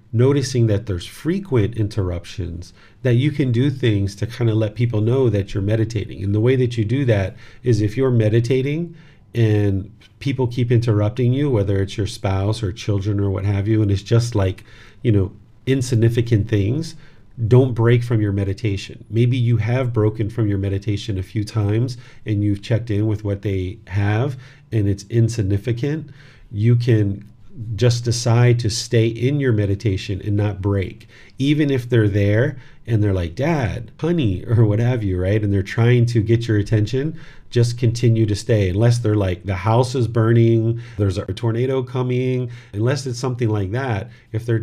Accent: American